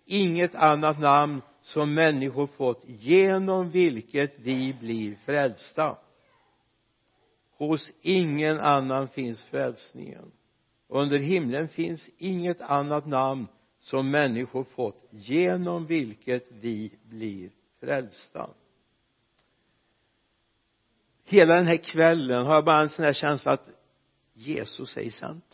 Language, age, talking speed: Swedish, 60-79, 110 wpm